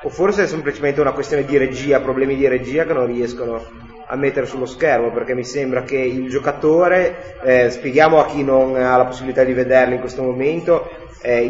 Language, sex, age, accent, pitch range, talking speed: Italian, male, 30-49, native, 125-160 Hz, 200 wpm